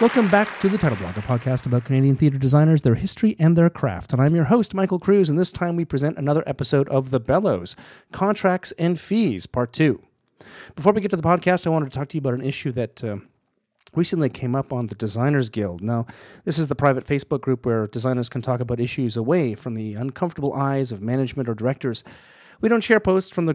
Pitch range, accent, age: 125-165 Hz, American, 30-49